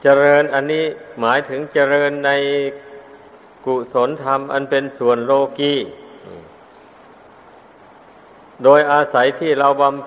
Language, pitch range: Thai, 130-145 Hz